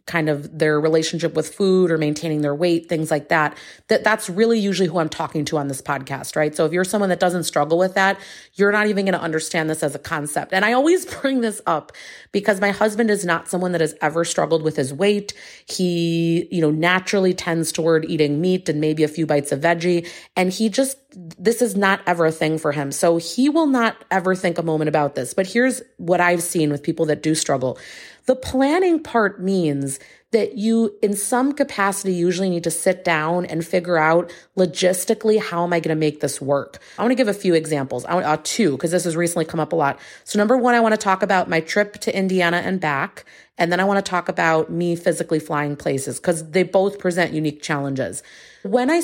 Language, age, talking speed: English, 30-49, 230 wpm